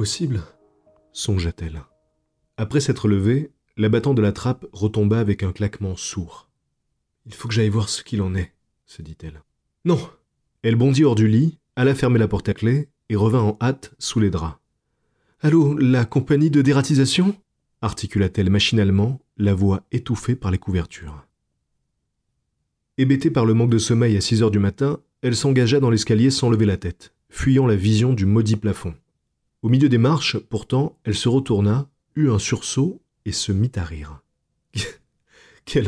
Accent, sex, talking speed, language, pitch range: French, male, 175 wpm, English, 100-130 Hz